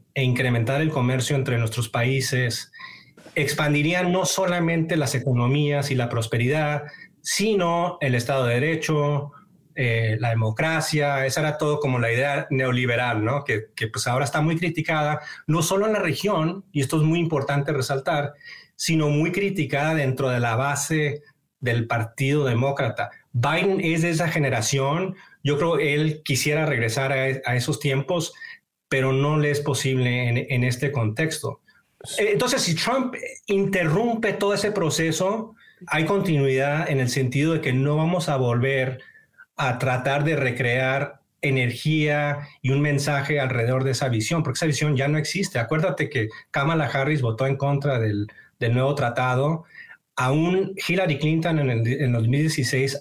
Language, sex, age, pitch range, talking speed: Spanish, male, 30-49, 130-160 Hz, 155 wpm